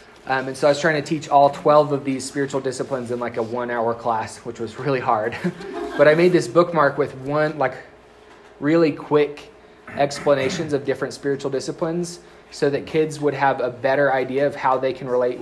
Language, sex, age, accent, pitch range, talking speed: English, male, 20-39, American, 120-145 Hz, 200 wpm